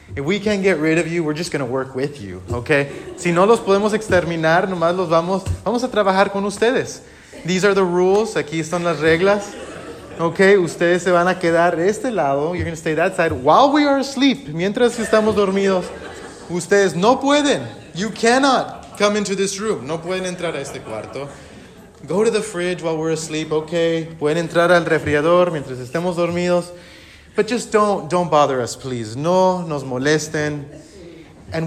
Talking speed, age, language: 190 wpm, 30-49, English